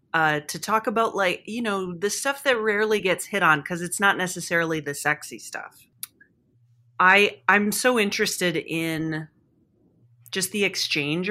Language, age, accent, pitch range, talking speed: English, 30-49, American, 150-190 Hz, 160 wpm